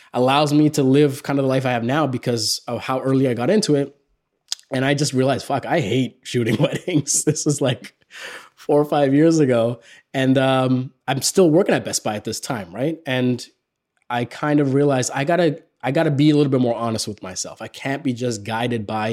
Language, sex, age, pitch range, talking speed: English, male, 20-39, 120-150 Hz, 225 wpm